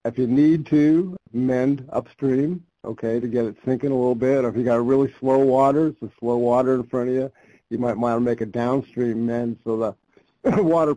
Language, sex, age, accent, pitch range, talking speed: English, male, 60-79, American, 115-135 Hz, 230 wpm